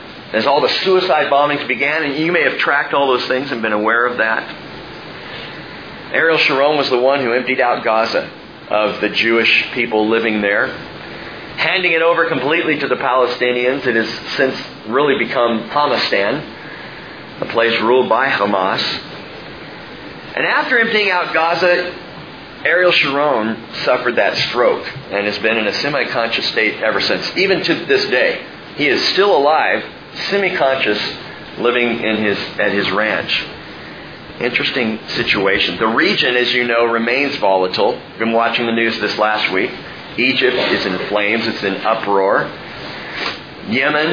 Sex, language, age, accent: male, English, 40-59, American